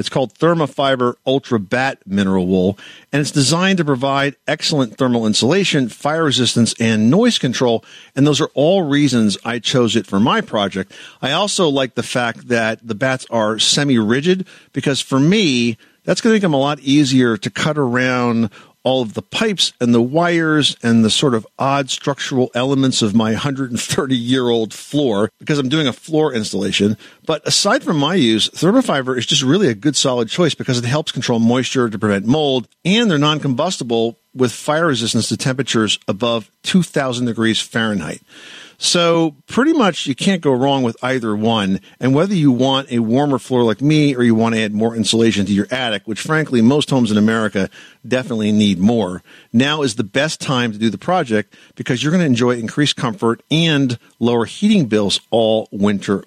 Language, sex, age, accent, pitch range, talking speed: English, male, 50-69, American, 115-145 Hz, 185 wpm